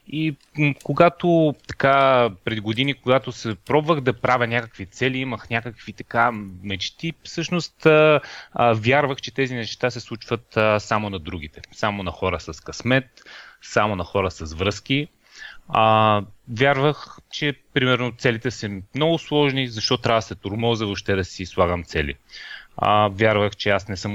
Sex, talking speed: male, 155 wpm